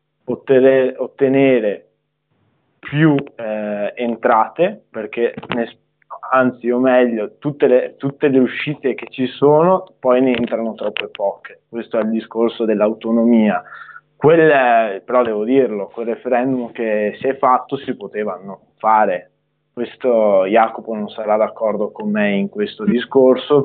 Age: 20-39